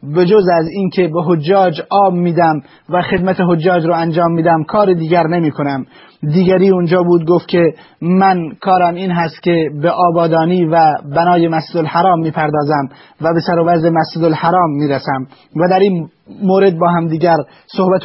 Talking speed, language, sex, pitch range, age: 165 wpm, Persian, male, 160-180 Hz, 30-49